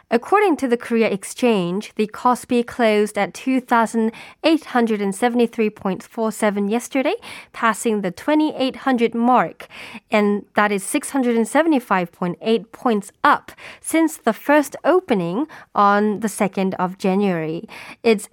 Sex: female